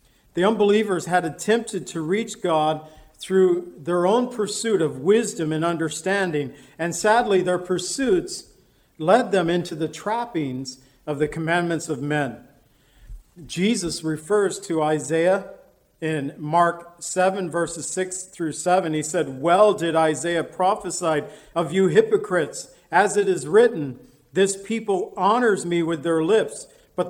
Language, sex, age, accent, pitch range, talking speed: English, male, 50-69, American, 155-195 Hz, 135 wpm